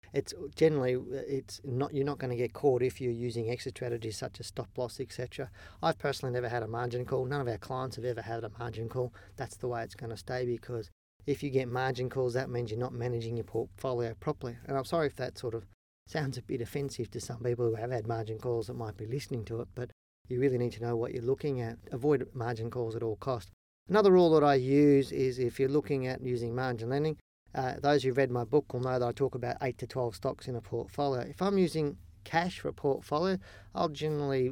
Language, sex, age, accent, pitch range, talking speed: English, male, 40-59, Australian, 115-135 Hz, 245 wpm